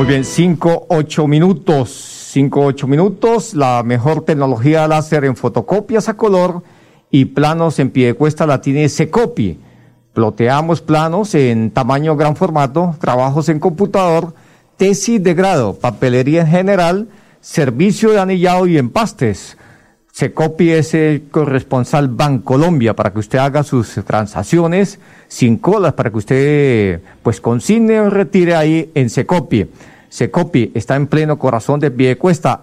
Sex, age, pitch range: male, 50-69, 130-170 Hz